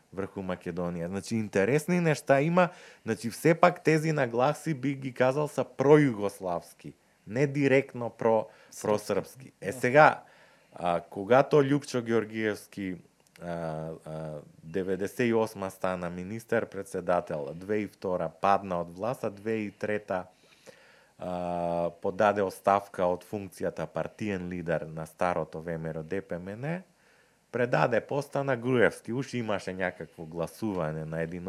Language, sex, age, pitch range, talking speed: Bulgarian, male, 30-49, 90-130 Hz, 115 wpm